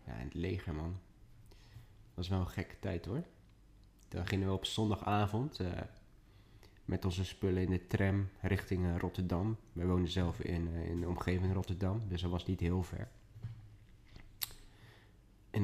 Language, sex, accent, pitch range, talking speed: Dutch, male, Dutch, 90-105 Hz, 165 wpm